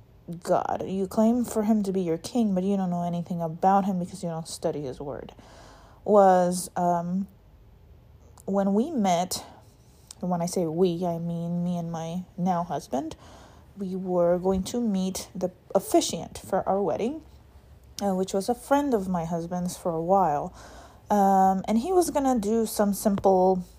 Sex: female